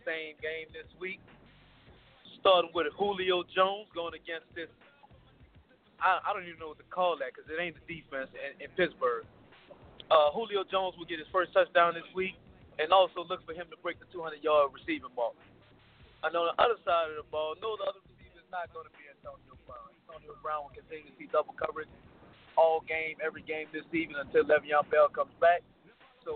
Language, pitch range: English, 155-185 Hz